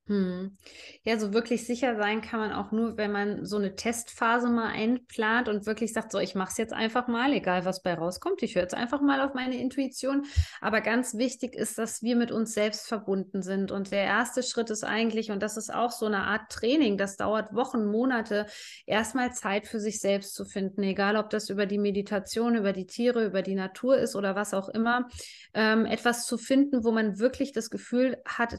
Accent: German